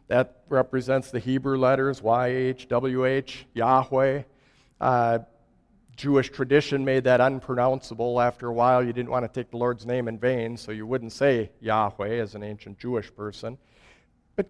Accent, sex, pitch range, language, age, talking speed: American, male, 120-200 Hz, English, 50-69, 155 wpm